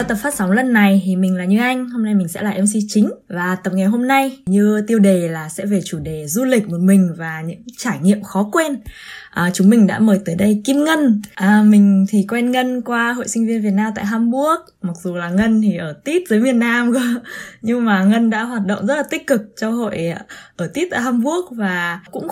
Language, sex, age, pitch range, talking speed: Vietnamese, female, 20-39, 195-250 Hz, 245 wpm